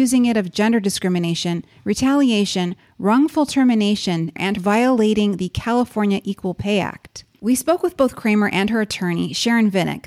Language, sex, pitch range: English, female, 190-255 Hz